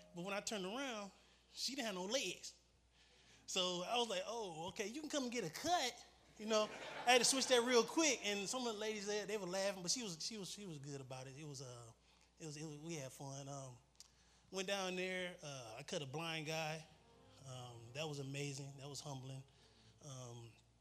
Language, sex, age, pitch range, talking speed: English, male, 20-39, 140-185 Hz, 230 wpm